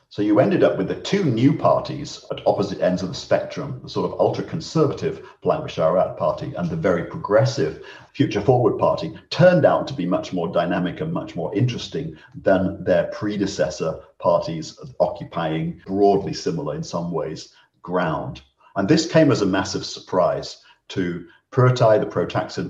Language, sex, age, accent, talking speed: English, male, 50-69, British, 160 wpm